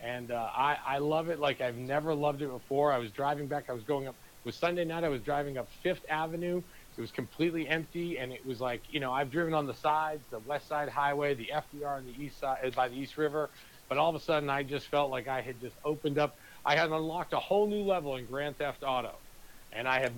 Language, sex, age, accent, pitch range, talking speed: English, male, 40-59, American, 130-155 Hz, 260 wpm